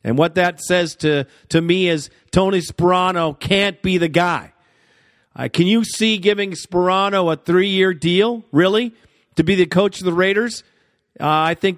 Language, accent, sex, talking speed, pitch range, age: English, American, male, 175 wpm, 155-185 Hz, 50-69